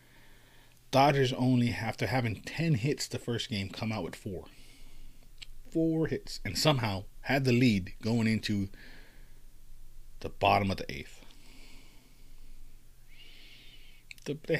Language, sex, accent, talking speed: English, male, American, 115 wpm